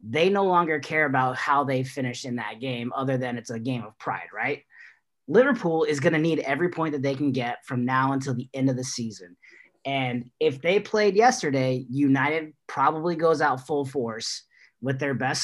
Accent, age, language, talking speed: American, 30-49, English, 200 wpm